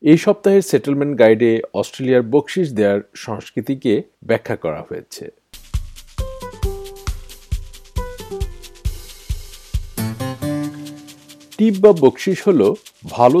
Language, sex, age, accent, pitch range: Bengali, male, 50-69, native, 110-155 Hz